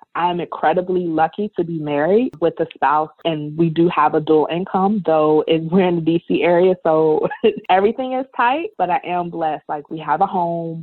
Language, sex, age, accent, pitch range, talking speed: English, female, 20-39, American, 155-190 Hz, 200 wpm